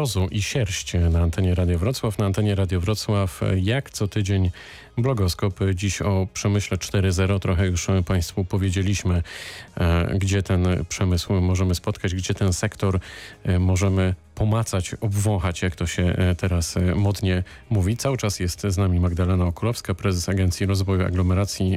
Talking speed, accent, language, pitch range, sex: 140 wpm, native, Polish, 95-105 Hz, male